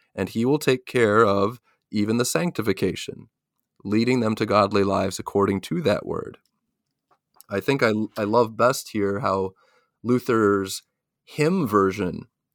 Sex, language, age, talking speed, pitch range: male, English, 30-49, 140 wpm, 100-120 Hz